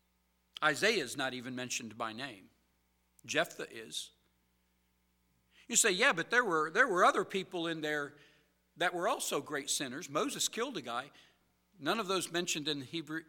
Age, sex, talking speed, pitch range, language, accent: 50-69, male, 165 wpm, 110-165 Hz, English, American